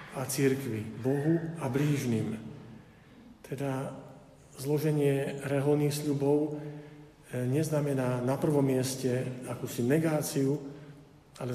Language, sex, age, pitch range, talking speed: Slovak, male, 50-69, 130-150 Hz, 85 wpm